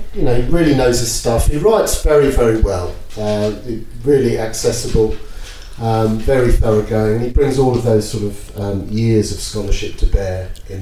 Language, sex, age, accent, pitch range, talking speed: English, male, 30-49, British, 105-135 Hz, 185 wpm